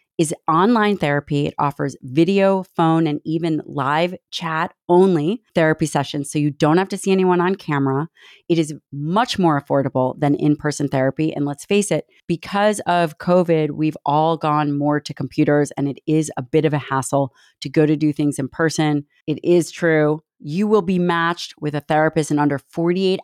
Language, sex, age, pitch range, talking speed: English, female, 30-49, 150-180 Hz, 185 wpm